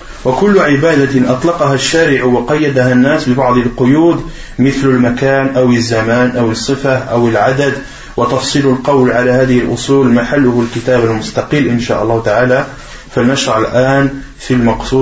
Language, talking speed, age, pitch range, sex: French, 50 wpm, 30-49, 125-155 Hz, male